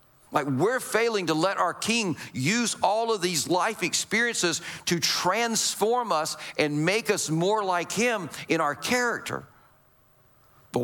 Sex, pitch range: male, 165-215 Hz